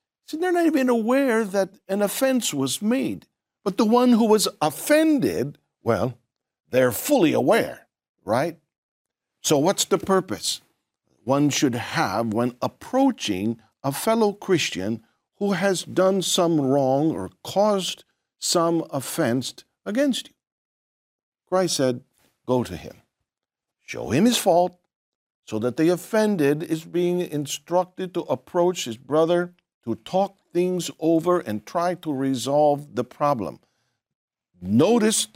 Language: English